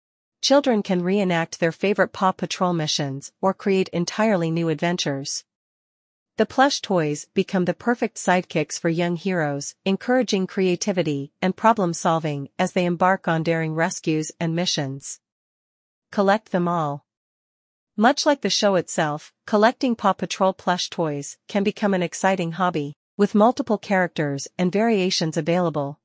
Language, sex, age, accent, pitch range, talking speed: English, female, 40-59, American, 155-200 Hz, 140 wpm